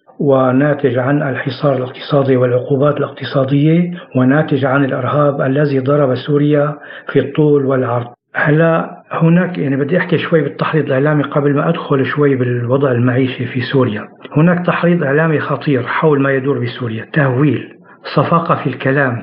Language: Arabic